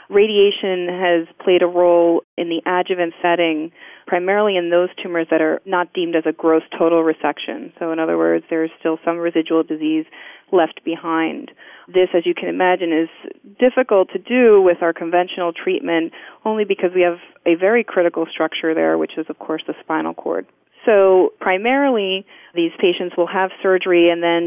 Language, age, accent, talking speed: English, 30-49, American, 175 wpm